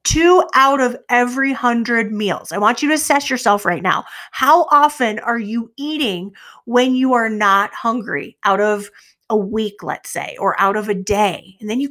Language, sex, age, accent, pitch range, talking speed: English, female, 30-49, American, 205-285 Hz, 190 wpm